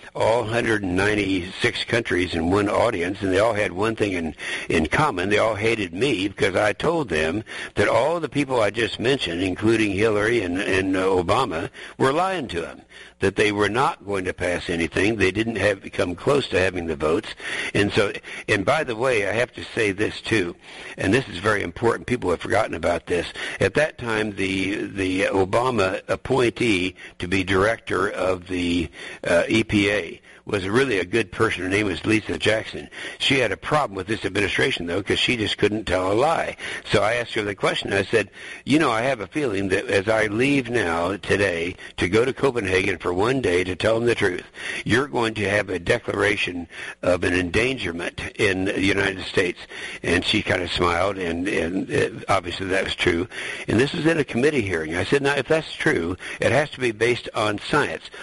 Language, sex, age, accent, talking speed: English, male, 60-79, American, 200 wpm